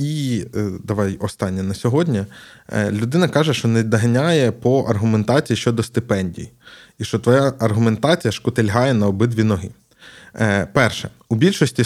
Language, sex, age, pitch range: Ukrainian, male, 20-39, 110-130 Hz